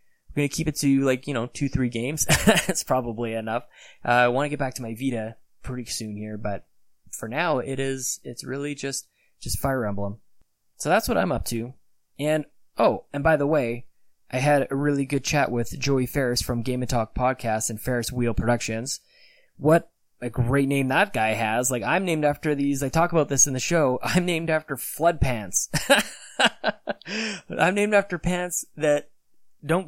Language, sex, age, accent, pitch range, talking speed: English, male, 20-39, American, 115-145 Hz, 195 wpm